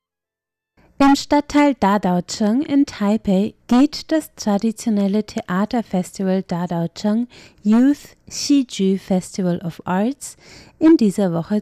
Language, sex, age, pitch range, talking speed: German, female, 30-49, 190-260 Hz, 95 wpm